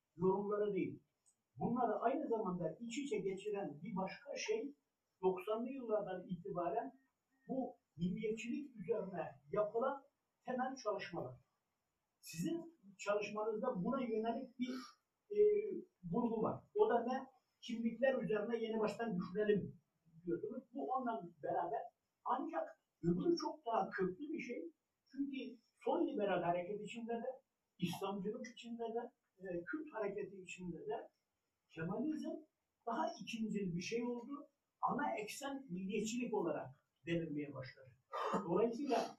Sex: male